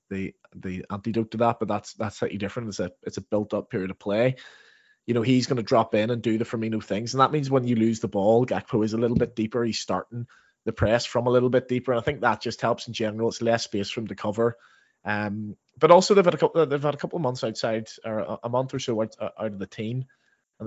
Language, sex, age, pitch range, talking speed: English, male, 20-39, 105-130 Hz, 270 wpm